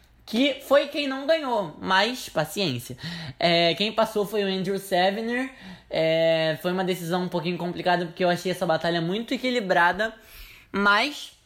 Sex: male